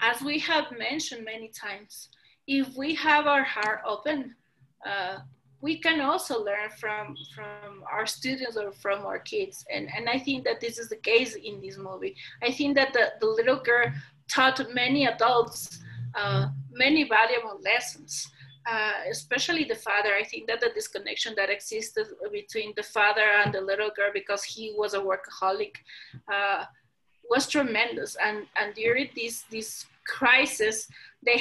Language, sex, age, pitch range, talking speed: Spanish, female, 30-49, 205-275 Hz, 160 wpm